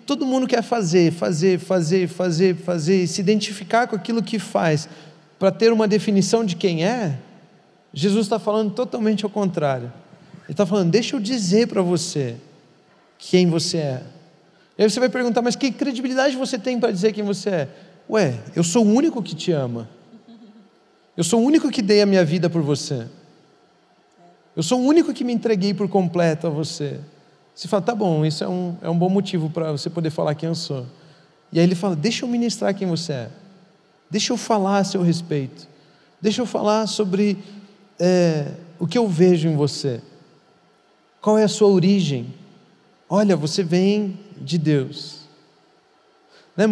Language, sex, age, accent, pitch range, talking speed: Portuguese, male, 40-59, Brazilian, 165-215 Hz, 175 wpm